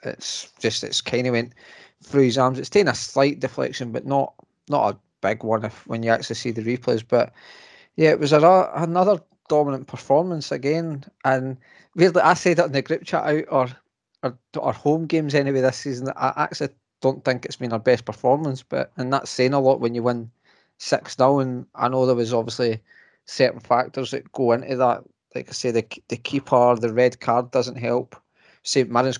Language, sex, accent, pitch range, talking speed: English, male, British, 120-140 Hz, 205 wpm